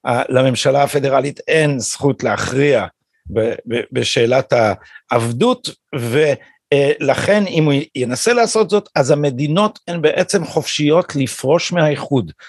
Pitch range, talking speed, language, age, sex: 130-180 Hz, 95 wpm, Hebrew, 50-69, male